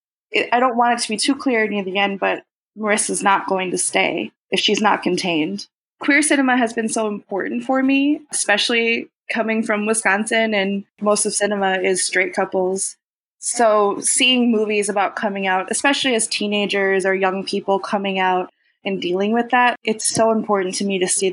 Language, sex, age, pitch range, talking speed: English, female, 20-39, 195-235 Hz, 185 wpm